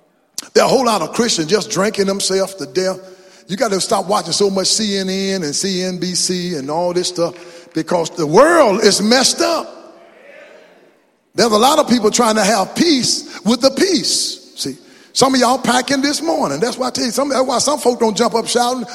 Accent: American